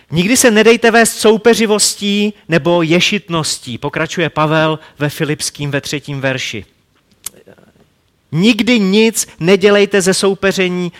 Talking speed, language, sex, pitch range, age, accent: 105 wpm, Czech, male, 125-170 Hz, 40-59, native